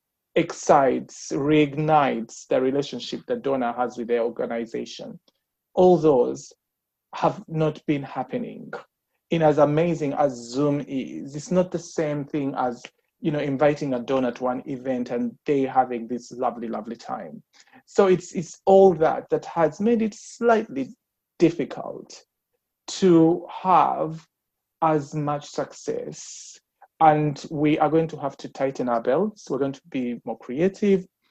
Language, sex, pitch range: English, male, 135-185 Hz